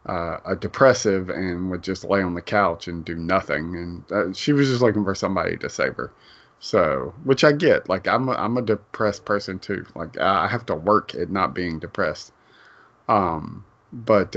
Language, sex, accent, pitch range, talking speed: English, male, American, 95-120 Hz, 195 wpm